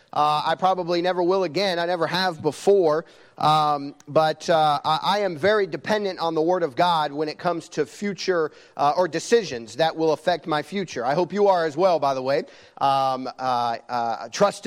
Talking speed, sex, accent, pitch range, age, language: 200 wpm, male, American, 160-200 Hz, 40-59, English